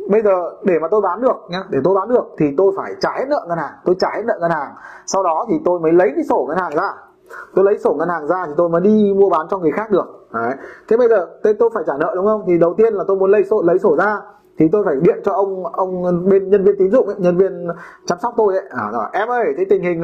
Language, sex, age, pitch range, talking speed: Vietnamese, male, 20-39, 165-220 Hz, 290 wpm